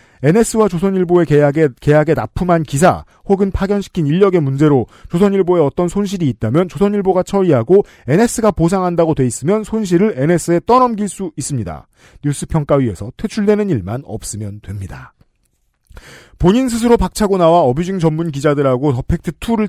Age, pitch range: 40-59, 140-190 Hz